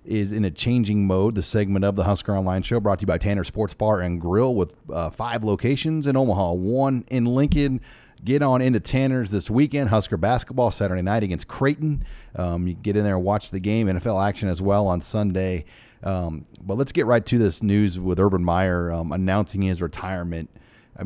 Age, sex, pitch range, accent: 30-49, male, 90-110 Hz, American